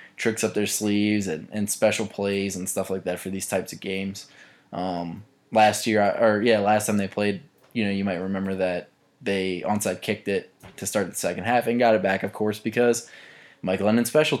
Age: 20-39